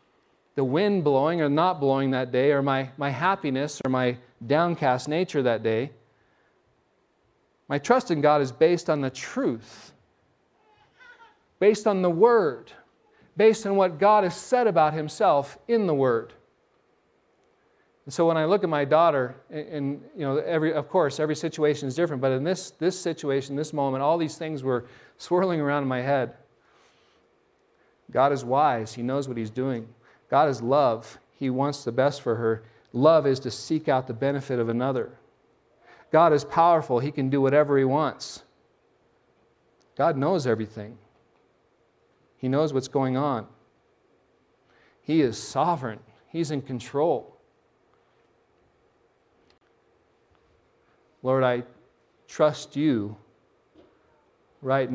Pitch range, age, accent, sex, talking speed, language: 130-165 Hz, 40-59, American, male, 145 wpm, English